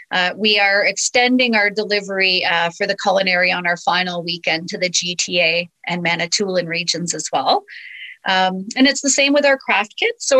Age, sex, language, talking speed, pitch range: 40-59, female, English, 185 wpm, 185-230 Hz